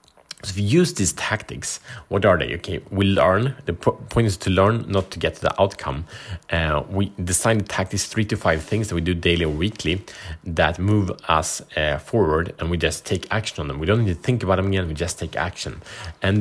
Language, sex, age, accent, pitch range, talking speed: Swedish, male, 30-49, Norwegian, 85-110 Hz, 235 wpm